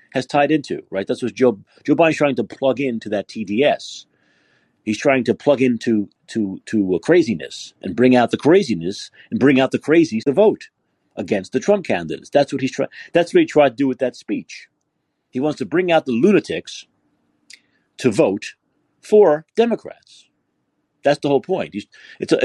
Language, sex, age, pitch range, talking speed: English, male, 40-59, 105-150 Hz, 185 wpm